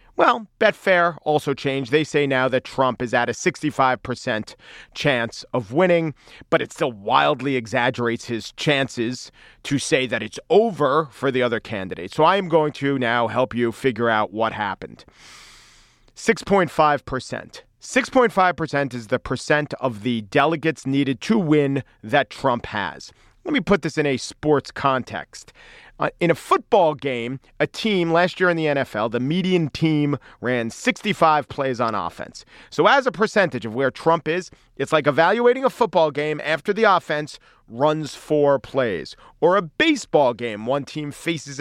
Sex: male